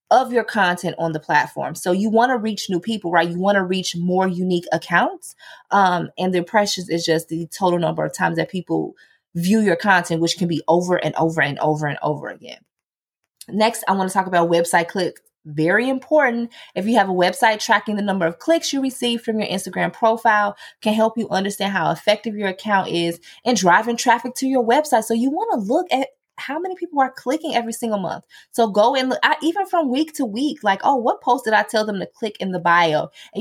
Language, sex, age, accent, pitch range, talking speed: English, female, 20-39, American, 175-235 Hz, 225 wpm